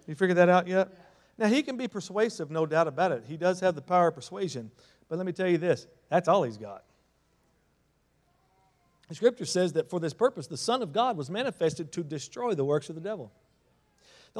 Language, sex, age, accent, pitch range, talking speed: English, male, 50-69, American, 135-190 Hz, 215 wpm